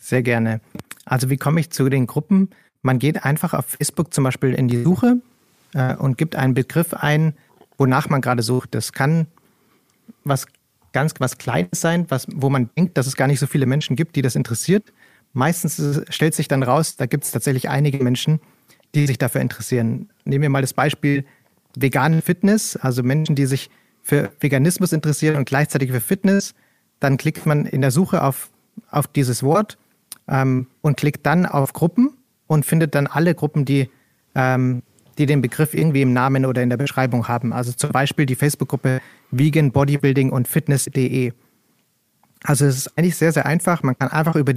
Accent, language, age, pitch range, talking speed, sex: German, German, 40-59, 130-160 Hz, 180 wpm, male